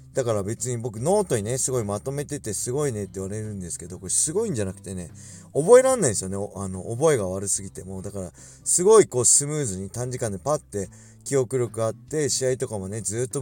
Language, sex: Japanese, male